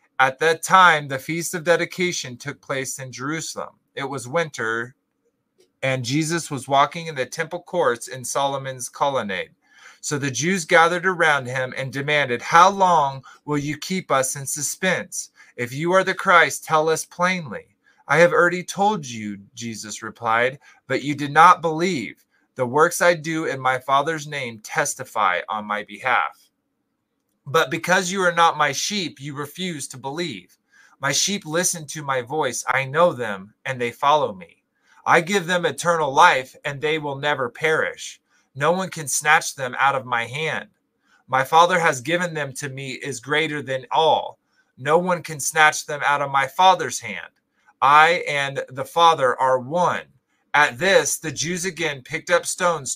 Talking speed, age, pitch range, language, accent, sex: 170 wpm, 30-49, 135-170 Hz, English, American, male